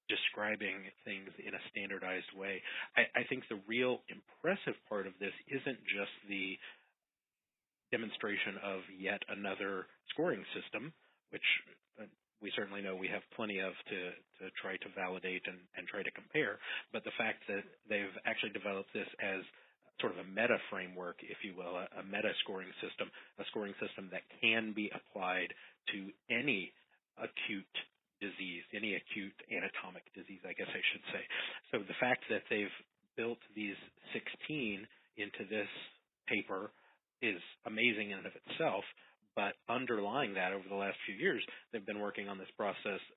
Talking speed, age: 160 wpm, 40-59